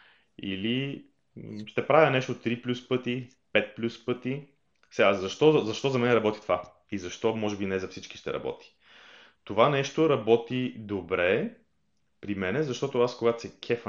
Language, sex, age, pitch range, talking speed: Bulgarian, male, 30-49, 100-125 Hz, 160 wpm